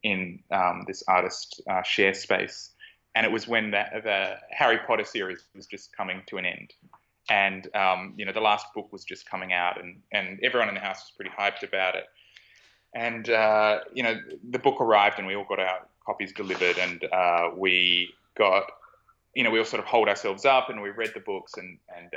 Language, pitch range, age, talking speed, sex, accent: English, 95-115 Hz, 20-39, 210 wpm, male, Australian